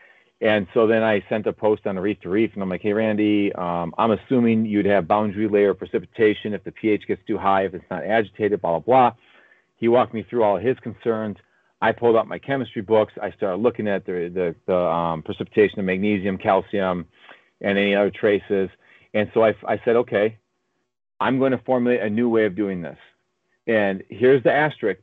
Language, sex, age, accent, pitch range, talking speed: English, male, 40-59, American, 100-125 Hz, 205 wpm